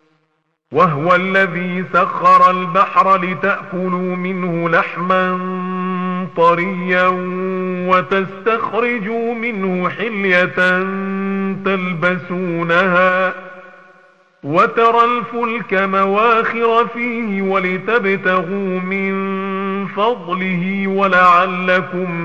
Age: 50-69